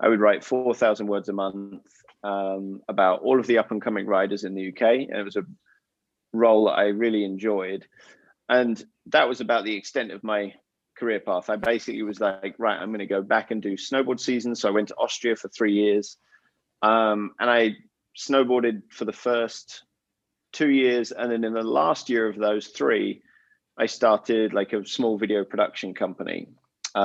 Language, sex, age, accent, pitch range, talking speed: English, male, 30-49, British, 100-115 Hz, 185 wpm